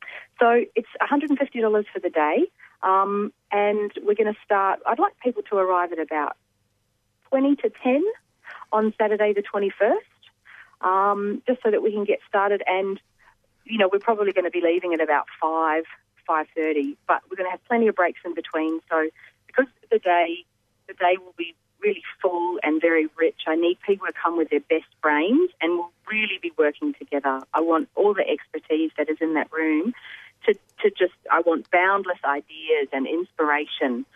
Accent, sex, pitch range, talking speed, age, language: Australian, female, 155-215 Hz, 185 wpm, 40-59, English